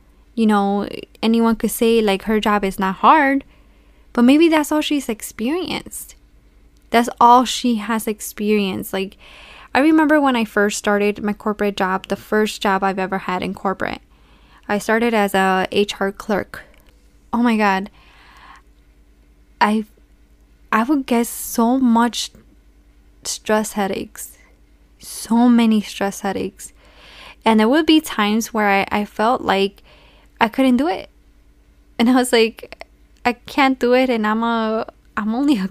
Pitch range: 195-235 Hz